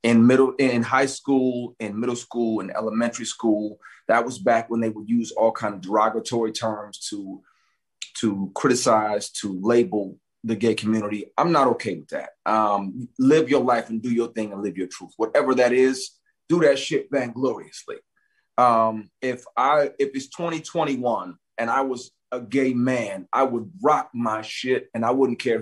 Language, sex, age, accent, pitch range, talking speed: English, male, 30-49, American, 115-180 Hz, 175 wpm